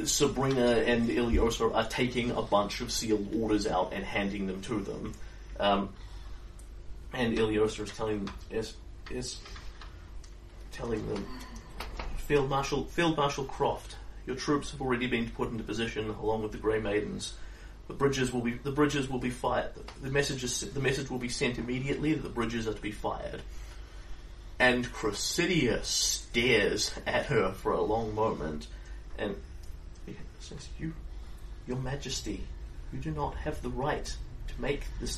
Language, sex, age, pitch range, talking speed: English, male, 30-49, 85-130 Hz, 155 wpm